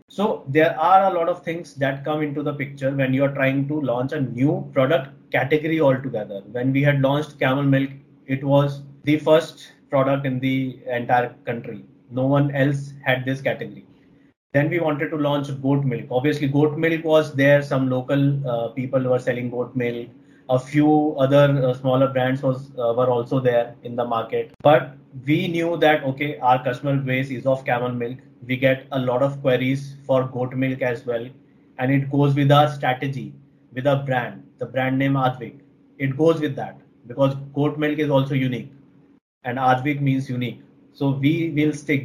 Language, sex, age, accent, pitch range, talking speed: English, male, 20-39, Indian, 130-145 Hz, 185 wpm